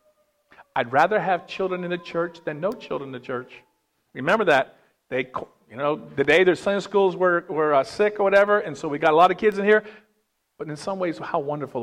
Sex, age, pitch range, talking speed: male, 50-69, 130-200 Hz, 230 wpm